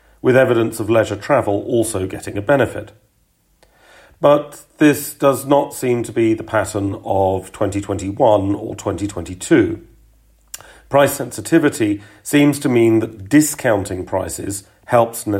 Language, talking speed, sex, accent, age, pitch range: English, 120 wpm, male, British, 40-59, 100-125 Hz